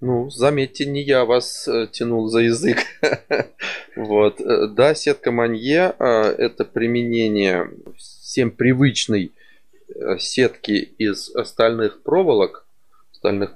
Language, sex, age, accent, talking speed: Russian, male, 20-39, native, 95 wpm